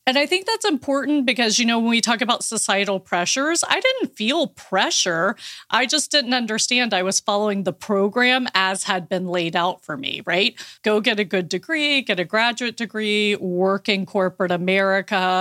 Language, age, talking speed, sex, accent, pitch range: English, 30-49, 185 wpm, female, American, 180-230 Hz